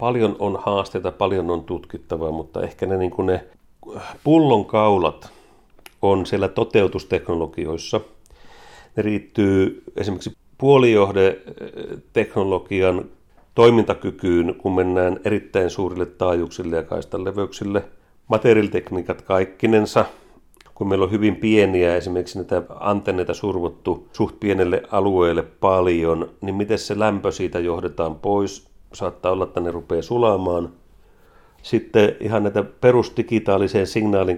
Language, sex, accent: Finnish, male, native